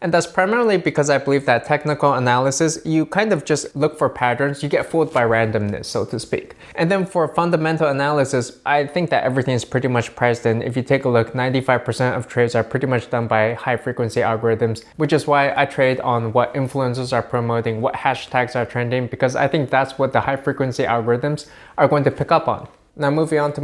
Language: English